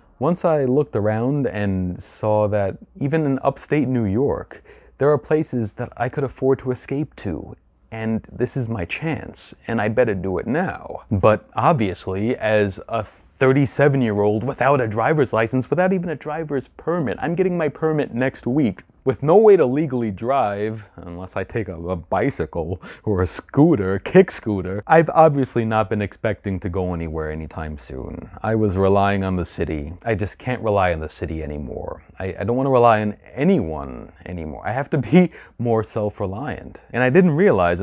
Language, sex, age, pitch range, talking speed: English, male, 30-49, 95-135 Hz, 180 wpm